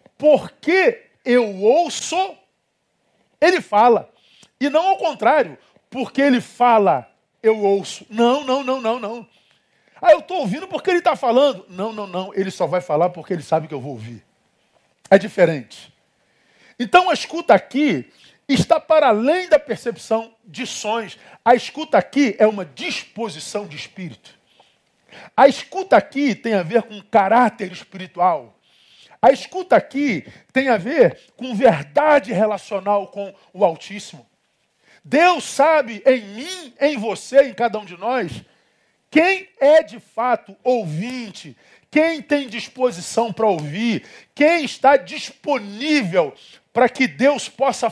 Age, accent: 50-69, Brazilian